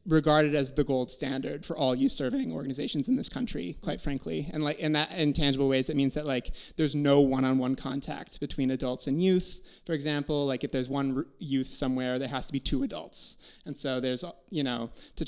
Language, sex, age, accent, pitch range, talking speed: English, male, 20-39, American, 130-155 Hz, 220 wpm